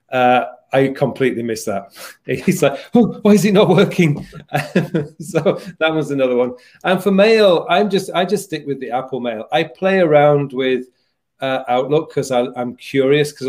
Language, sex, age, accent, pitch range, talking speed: English, male, 40-59, British, 115-155 Hz, 180 wpm